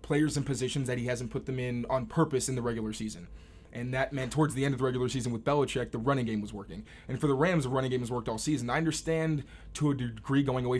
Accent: American